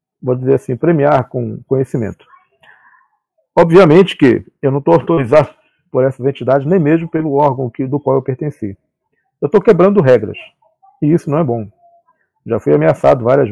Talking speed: 165 wpm